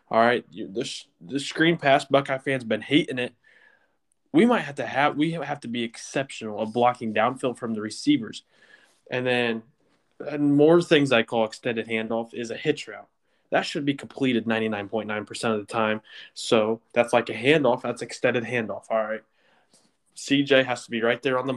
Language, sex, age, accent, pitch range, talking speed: English, male, 20-39, American, 110-140 Hz, 185 wpm